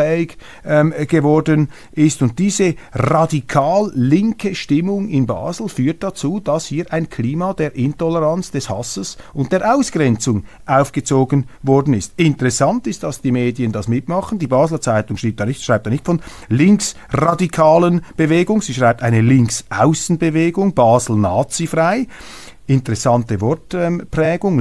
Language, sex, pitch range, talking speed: German, male, 115-165 Hz, 115 wpm